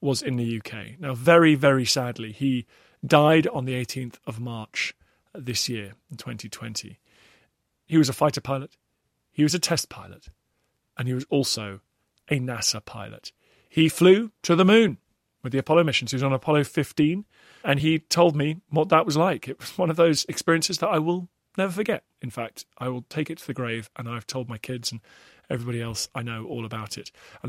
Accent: British